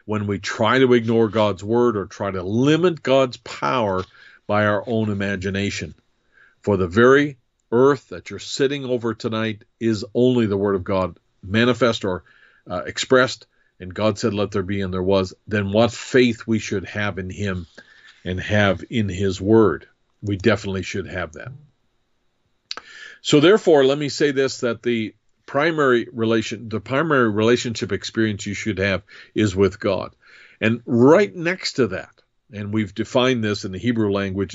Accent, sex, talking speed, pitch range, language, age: American, male, 165 wpm, 100-120 Hz, English, 50-69